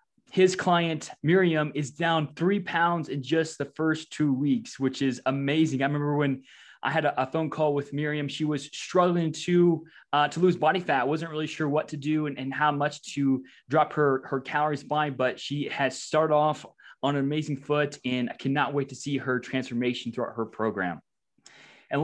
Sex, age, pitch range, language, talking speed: male, 20-39, 140-170 Hz, English, 200 wpm